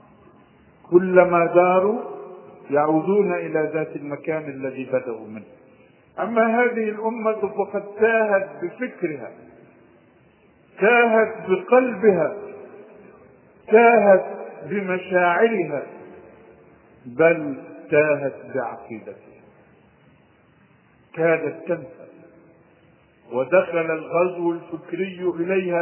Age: 50-69